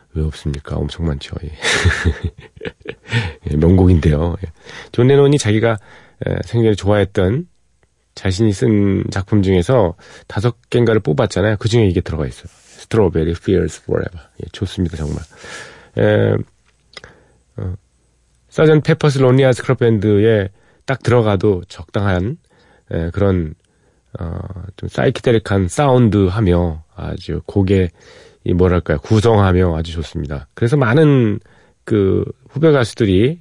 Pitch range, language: 90-120 Hz, Korean